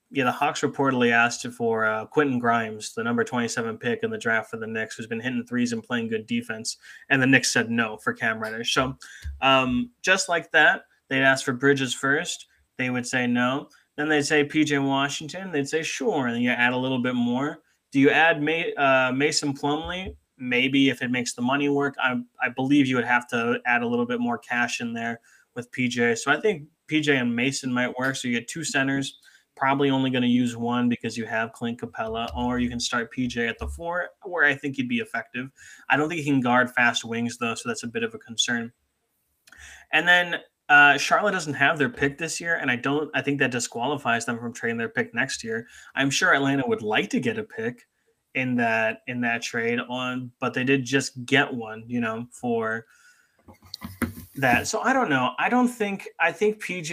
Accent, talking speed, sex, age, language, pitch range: American, 220 wpm, male, 20-39, English, 120-145 Hz